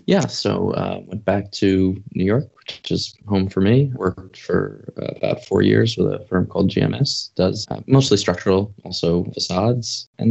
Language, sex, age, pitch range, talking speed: English, male, 20-39, 90-110 Hz, 175 wpm